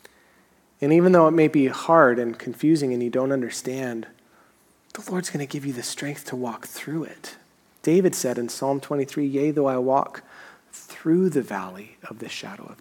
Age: 30-49